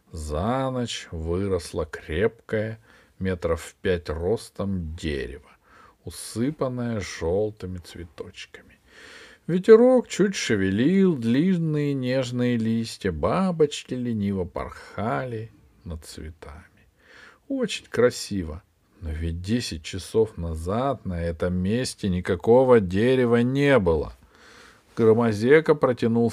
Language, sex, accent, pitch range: Russian, male, native, 100-130 Hz